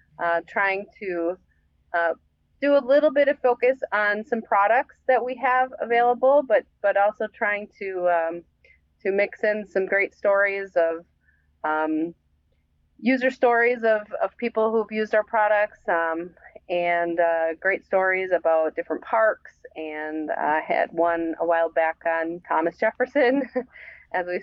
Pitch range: 175-230 Hz